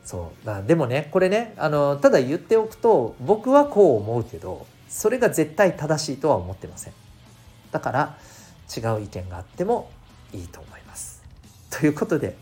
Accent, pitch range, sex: native, 100-135 Hz, male